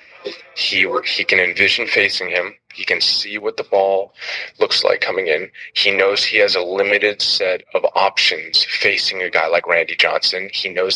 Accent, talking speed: American, 180 wpm